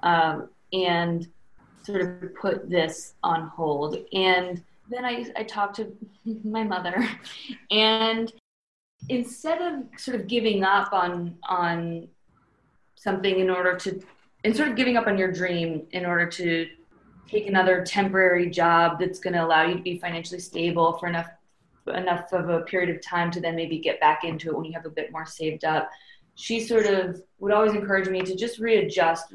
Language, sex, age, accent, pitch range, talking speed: English, female, 20-39, American, 165-200 Hz, 175 wpm